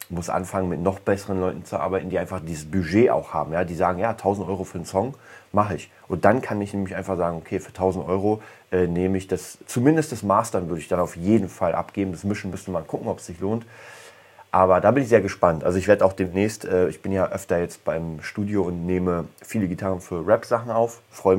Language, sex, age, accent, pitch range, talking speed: German, male, 30-49, German, 90-100 Hz, 240 wpm